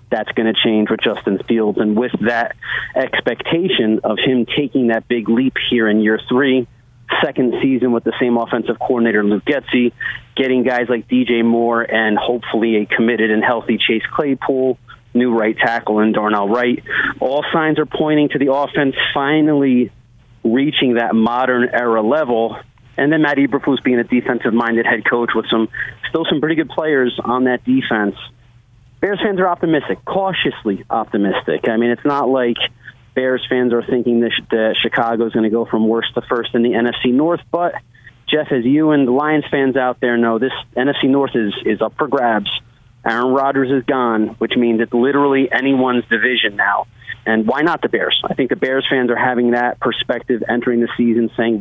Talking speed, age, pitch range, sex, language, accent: 185 wpm, 30-49, 115-135 Hz, male, English, American